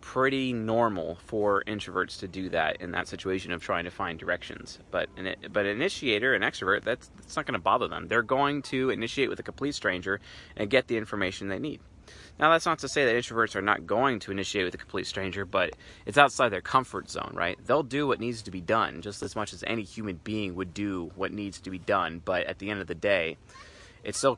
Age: 30-49